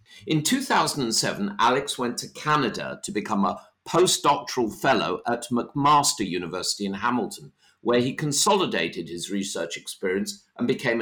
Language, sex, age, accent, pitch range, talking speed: English, male, 50-69, British, 100-130 Hz, 130 wpm